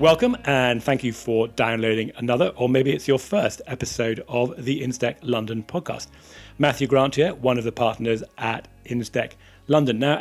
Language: English